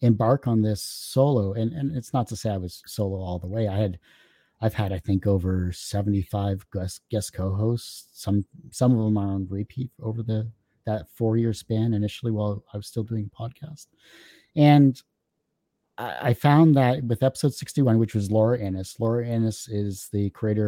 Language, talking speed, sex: English, 185 wpm, male